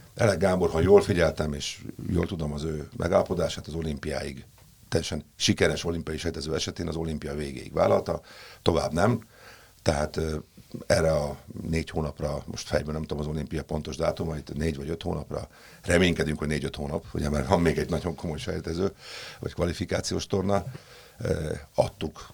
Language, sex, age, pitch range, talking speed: Hungarian, male, 50-69, 80-95 Hz, 160 wpm